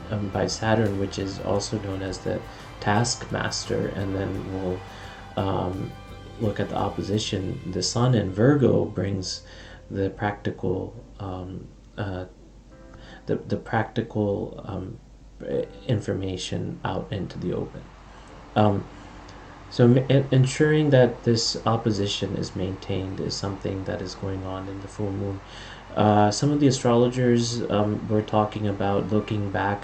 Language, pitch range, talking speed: English, 95-115 Hz, 135 wpm